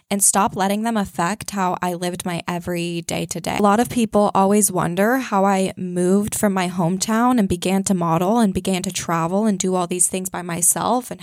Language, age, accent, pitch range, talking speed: English, 20-39, American, 180-230 Hz, 220 wpm